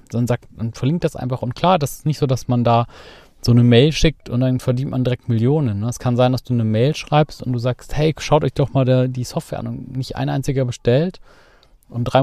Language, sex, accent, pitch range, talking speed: German, male, German, 115-140 Hz, 250 wpm